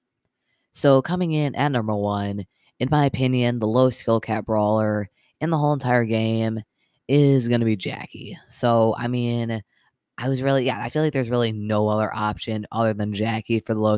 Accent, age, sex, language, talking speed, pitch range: American, 20-39, female, English, 195 wpm, 105-120 Hz